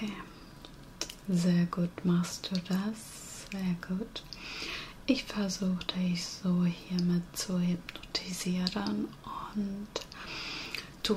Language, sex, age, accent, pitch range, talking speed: German, female, 30-49, German, 175-205 Hz, 85 wpm